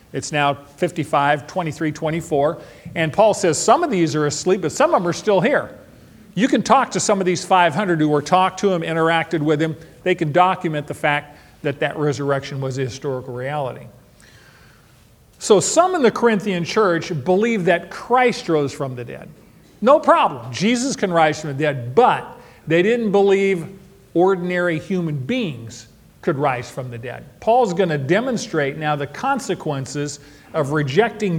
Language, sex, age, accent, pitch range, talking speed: English, male, 40-59, American, 150-200 Hz, 170 wpm